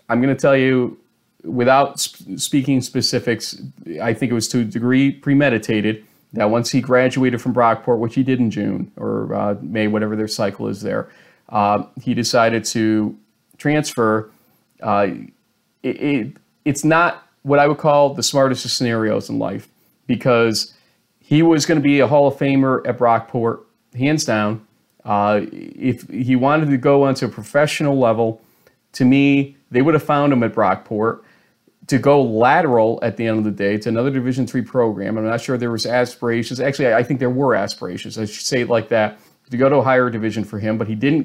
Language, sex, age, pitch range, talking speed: English, male, 40-59, 110-135 Hz, 190 wpm